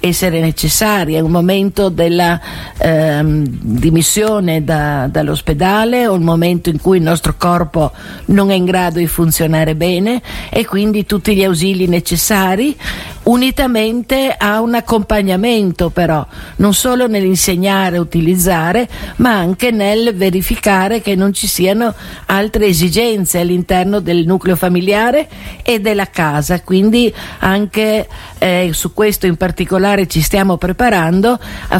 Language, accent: Italian, native